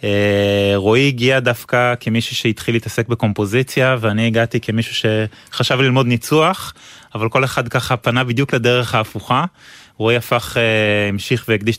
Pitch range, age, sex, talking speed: 110-135 Hz, 20-39, male, 125 wpm